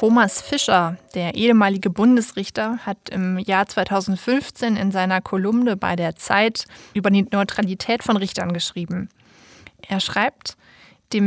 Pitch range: 190-225 Hz